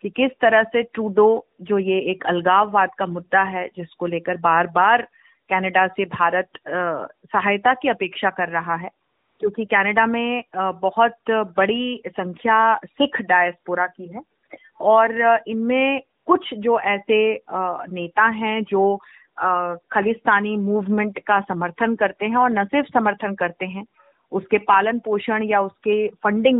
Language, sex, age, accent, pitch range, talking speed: Hindi, female, 30-49, native, 190-235 Hz, 140 wpm